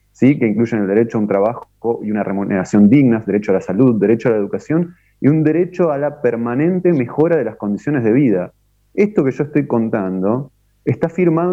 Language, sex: Spanish, male